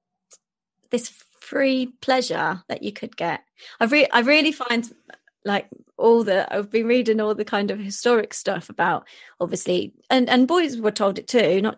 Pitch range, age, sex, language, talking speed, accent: 190-235 Hz, 20-39, female, English, 175 wpm, British